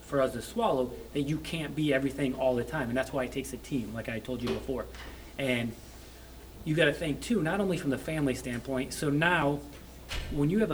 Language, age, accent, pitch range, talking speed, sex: English, 30-49, American, 130-150 Hz, 230 wpm, male